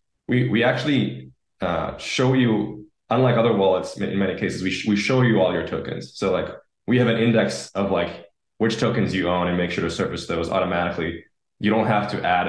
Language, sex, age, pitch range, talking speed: English, male, 10-29, 90-115 Hz, 210 wpm